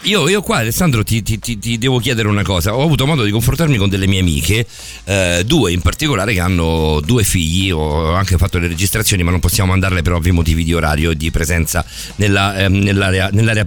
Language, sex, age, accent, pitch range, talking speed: Italian, male, 50-69, native, 95-135 Hz, 205 wpm